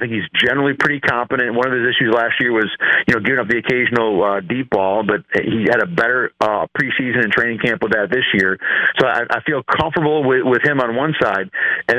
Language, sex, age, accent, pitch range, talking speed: English, male, 40-59, American, 120-155 Hz, 240 wpm